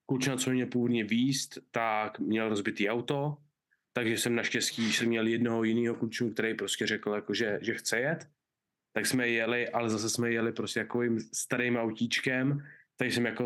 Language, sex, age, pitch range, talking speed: Czech, male, 20-39, 115-130 Hz, 175 wpm